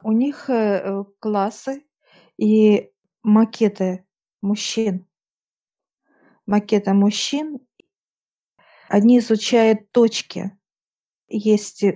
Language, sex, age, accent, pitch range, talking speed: Russian, female, 50-69, native, 195-220 Hz, 60 wpm